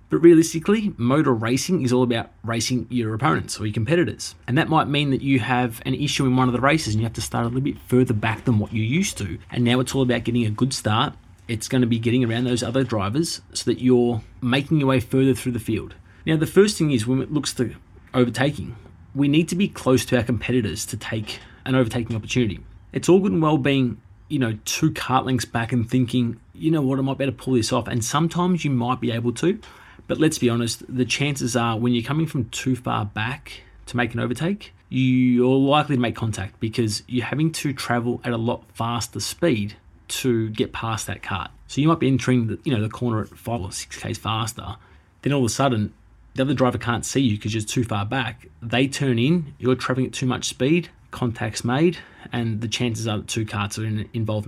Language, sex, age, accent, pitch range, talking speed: English, male, 20-39, Australian, 110-135 Hz, 235 wpm